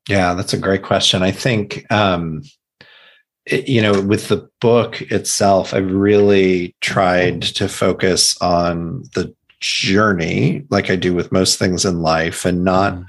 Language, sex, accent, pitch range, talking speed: English, male, American, 90-100 Hz, 145 wpm